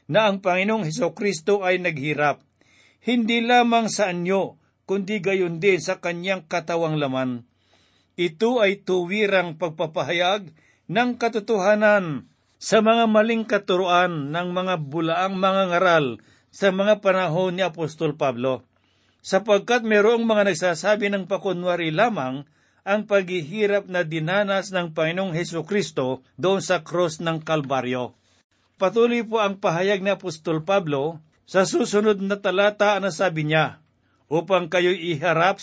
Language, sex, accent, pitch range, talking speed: Filipino, male, native, 160-200 Hz, 130 wpm